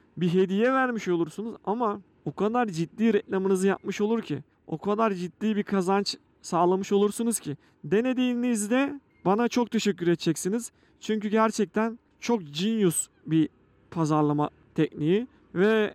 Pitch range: 170-220 Hz